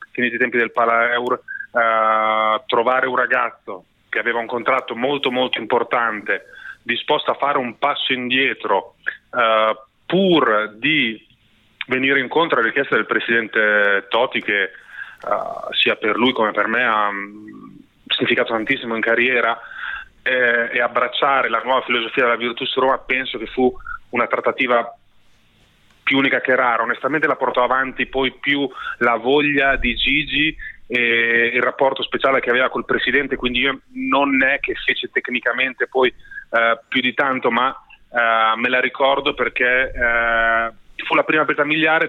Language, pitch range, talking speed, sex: Italian, 115-145 Hz, 150 wpm, male